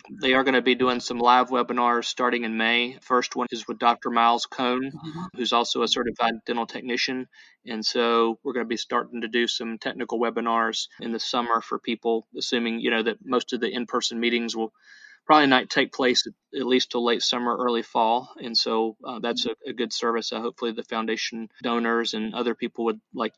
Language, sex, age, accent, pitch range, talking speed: English, male, 30-49, American, 115-125 Hz, 210 wpm